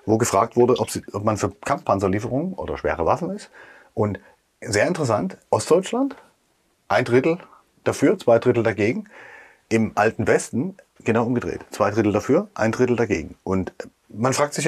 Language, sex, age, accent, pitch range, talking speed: German, male, 30-49, German, 105-135 Hz, 155 wpm